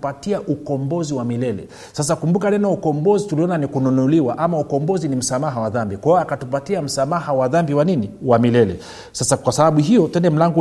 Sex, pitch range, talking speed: male, 125-175 Hz, 175 wpm